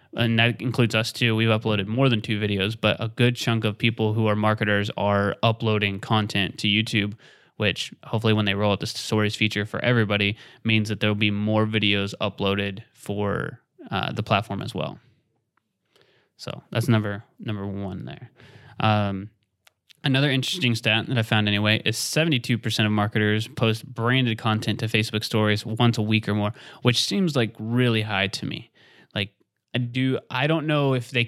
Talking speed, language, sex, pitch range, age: 175 wpm, English, male, 105-120 Hz, 20-39